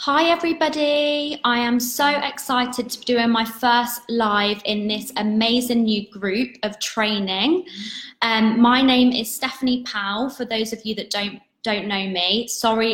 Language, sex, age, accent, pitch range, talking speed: English, female, 20-39, British, 195-245 Hz, 160 wpm